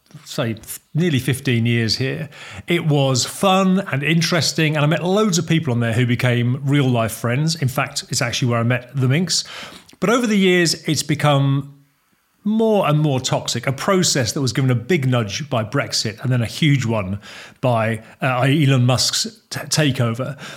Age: 40-59